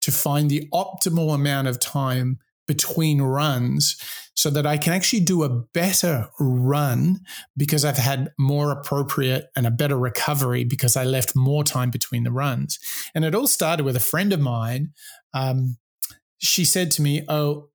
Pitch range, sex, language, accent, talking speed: 135-160 Hz, male, English, Australian, 170 wpm